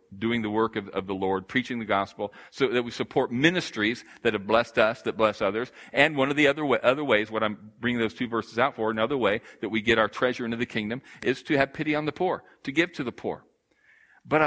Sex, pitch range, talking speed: male, 90-115 Hz, 255 wpm